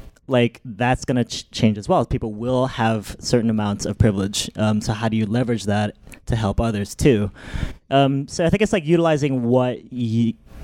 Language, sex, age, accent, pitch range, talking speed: English, male, 20-39, American, 105-130 Hz, 190 wpm